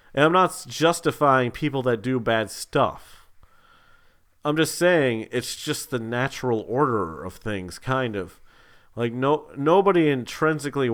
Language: English